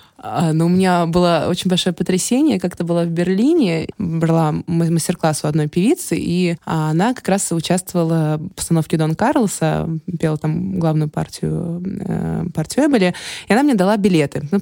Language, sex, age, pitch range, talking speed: Russian, female, 20-39, 170-220 Hz, 155 wpm